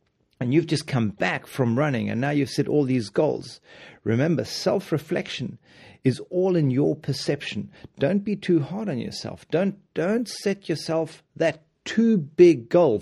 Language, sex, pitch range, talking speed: English, male, 130-175 Hz, 160 wpm